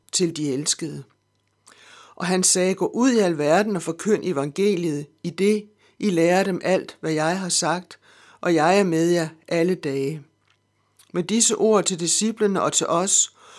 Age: 60-79